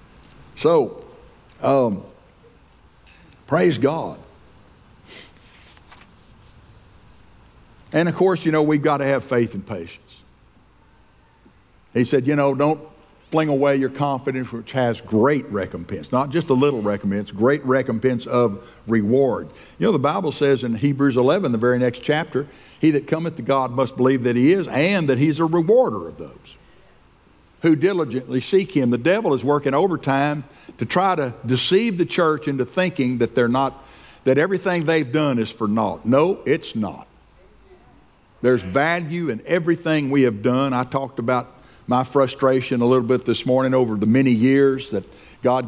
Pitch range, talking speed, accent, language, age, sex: 120-145 Hz, 160 wpm, American, English, 60-79, male